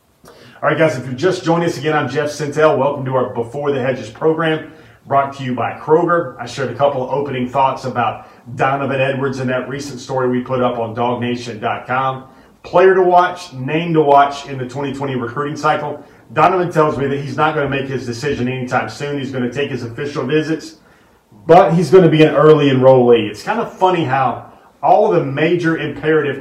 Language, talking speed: English, 210 wpm